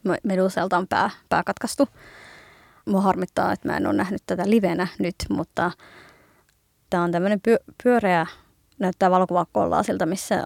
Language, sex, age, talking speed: Finnish, female, 20-39, 140 wpm